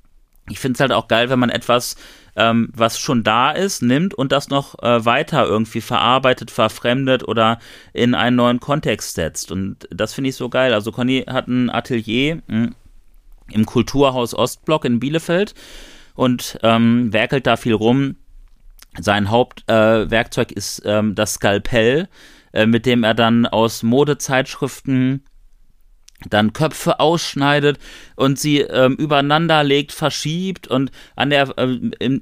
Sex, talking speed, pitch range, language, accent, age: male, 145 wpm, 115-150 Hz, German, German, 30-49